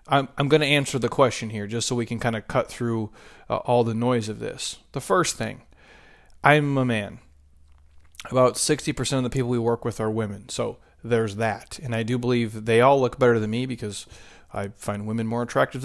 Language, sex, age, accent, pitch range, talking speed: English, male, 30-49, American, 115-135 Hz, 215 wpm